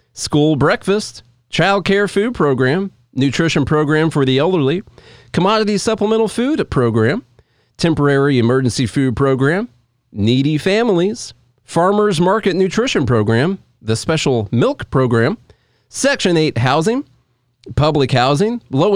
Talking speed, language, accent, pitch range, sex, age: 110 wpm, English, American, 130-185 Hz, male, 40-59